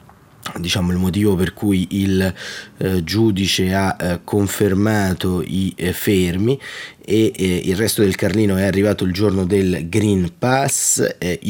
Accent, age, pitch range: native, 30-49, 85-100 Hz